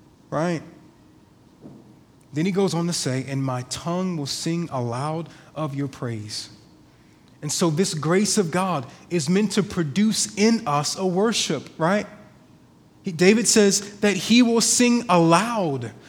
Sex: male